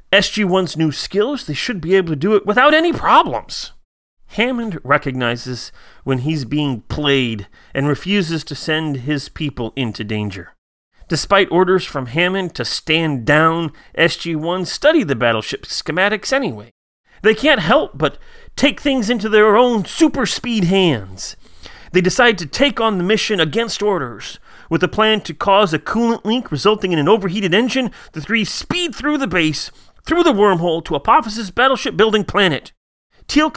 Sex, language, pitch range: male, English, 145-215 Hz